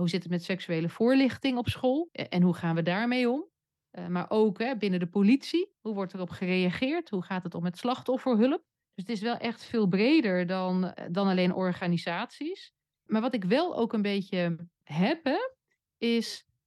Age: 30-49